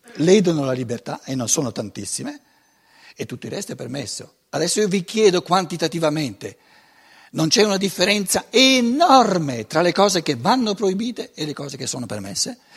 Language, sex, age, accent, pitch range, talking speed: Italian, male, 60-79, native, 140-210 Hz, 165 wpm